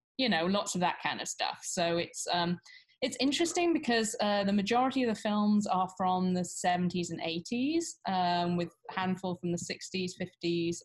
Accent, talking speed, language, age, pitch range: British, 190 wpm, English, 20-39, 165-195 Hz